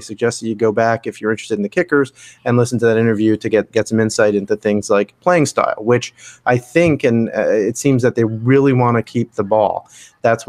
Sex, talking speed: male, 235 wpm